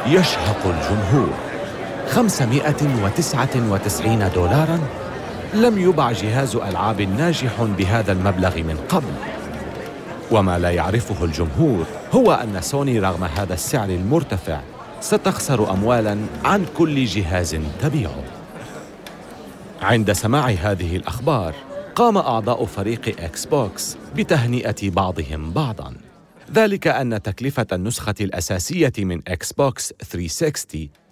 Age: 40-59